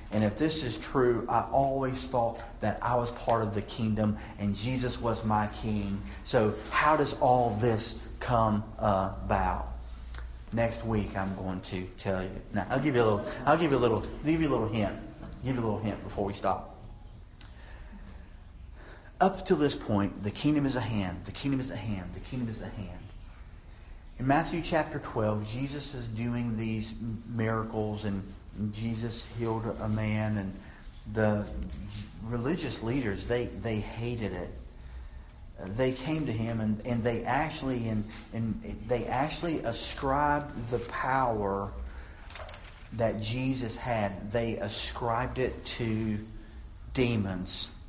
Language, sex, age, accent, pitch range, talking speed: English, male, 40-59, American, 100-125 Hz, 155 wpm